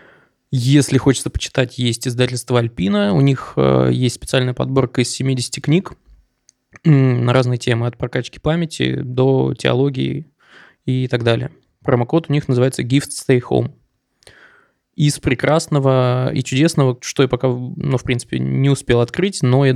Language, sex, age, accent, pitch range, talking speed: Russian, male, 20-39, native, 125-140 Hz, 145 wpm